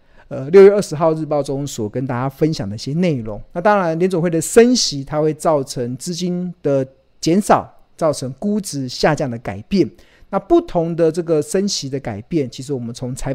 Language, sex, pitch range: Chinese, male, 130-175 Hz